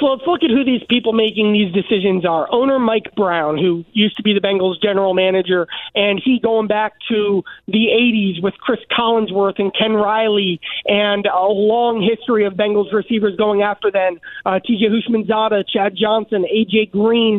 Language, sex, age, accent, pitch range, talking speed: English, male, 30-49, American, 215-240 Hz, 180 wpm